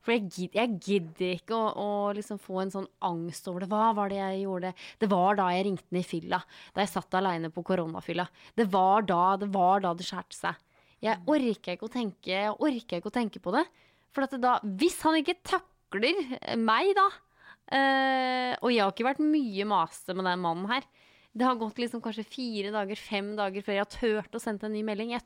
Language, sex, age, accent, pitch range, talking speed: English, female, 20-39, Norwegian, 190-245 Hz, 200 wpm